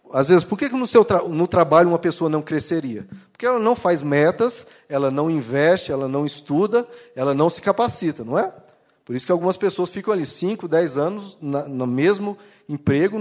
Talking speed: 200 wpm